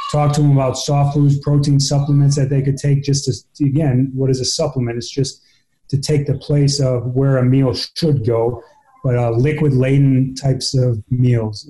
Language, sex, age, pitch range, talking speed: English, male, 30-49, 125-145 Hz, 190 wpm